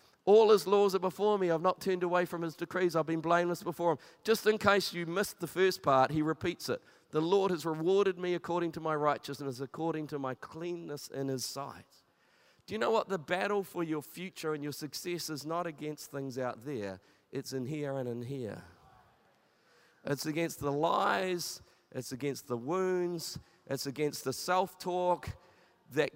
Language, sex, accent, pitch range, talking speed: English, male, Australian, 130-175 Hz, 190 wpm